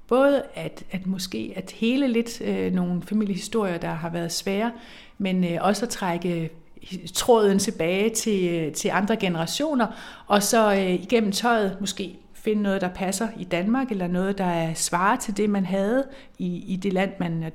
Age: 60-79